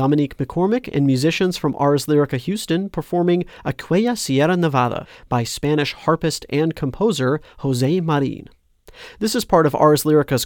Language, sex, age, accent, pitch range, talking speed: English, male, 40-59, American, 130-180 Hz, 145 wpm